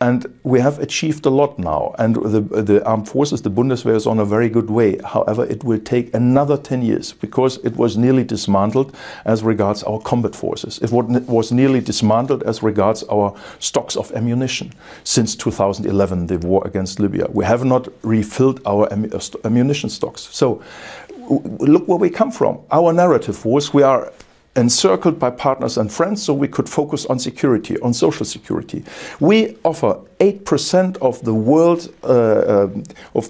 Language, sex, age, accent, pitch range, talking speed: English, male, 50-69, German, 110-140 Hz, 170 wpm